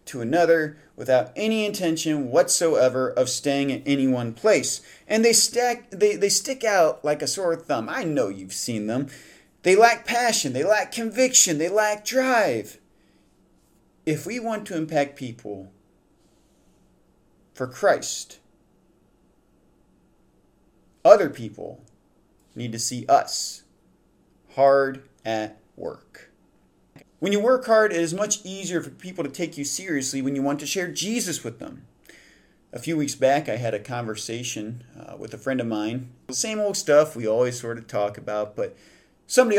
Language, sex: English, male